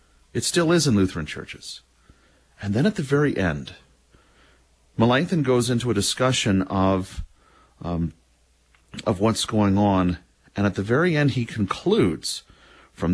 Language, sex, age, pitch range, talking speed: English, male, 40-59, 85-125 Hz, 140 wpm